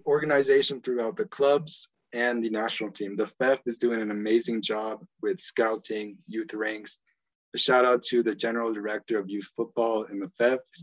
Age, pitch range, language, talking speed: 20-39, 110-130 Hz, English, 185 wpm